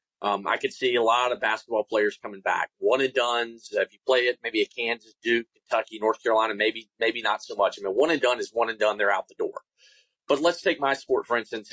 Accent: American